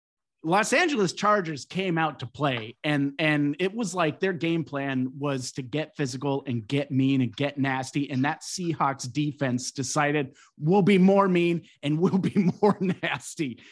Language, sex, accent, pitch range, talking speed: English, male, American, 120-160 Hz, 170 wpm